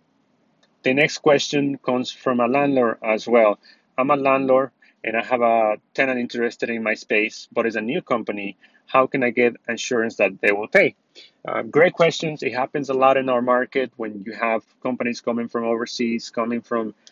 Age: 30-49